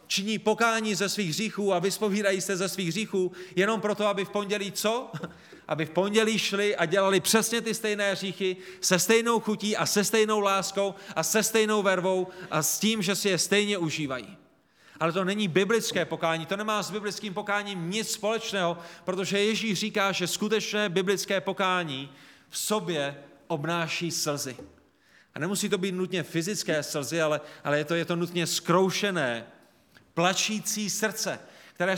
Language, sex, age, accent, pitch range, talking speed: Czech, male, 30-49, native, 160-200 Hz, 165 wpm